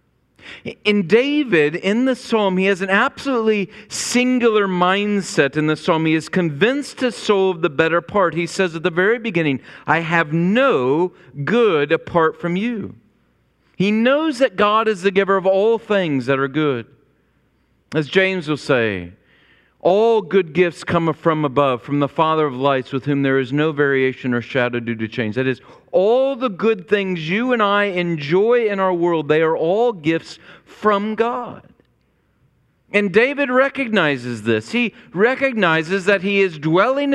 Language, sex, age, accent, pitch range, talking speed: English, male, 40-59, American, 135-200 Hz, 170 wpm